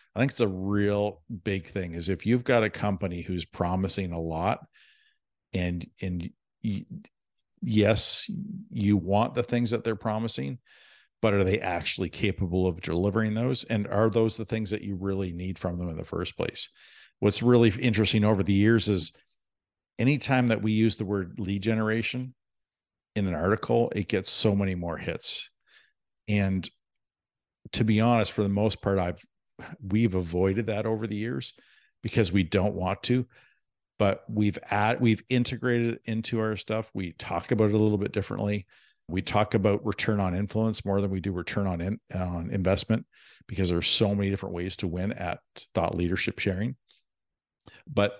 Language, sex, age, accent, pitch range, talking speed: English, male, 50-69, American, 95-110 Hz, 175 wpm